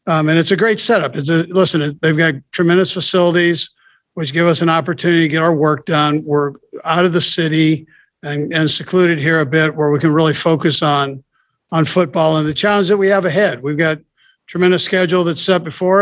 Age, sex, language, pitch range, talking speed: 60-79, male, English, 145-175 Hz, 210 wpm